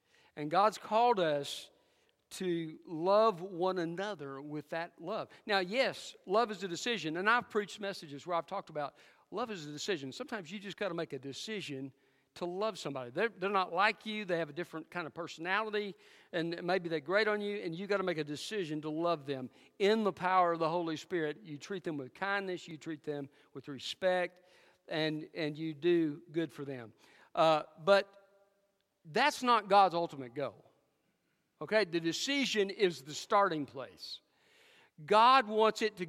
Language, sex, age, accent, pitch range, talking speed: English, male, 50-69, American, 160-220 Hz, 185 wpm